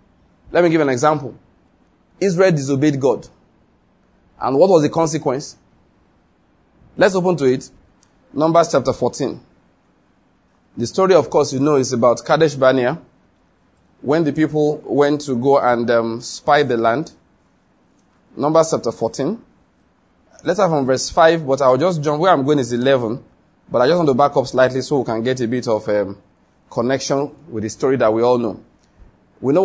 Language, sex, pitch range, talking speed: English, male, 125-160 Hz, 170 wpm